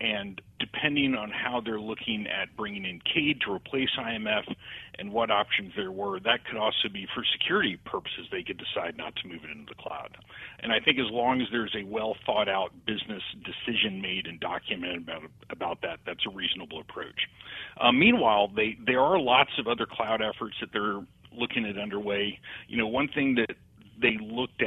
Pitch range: 105-130 Hz